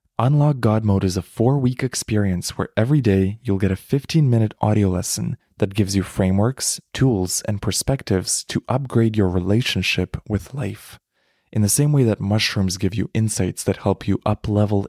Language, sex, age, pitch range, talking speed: English, male, 20-39, 95-110 Hz, 170 wpm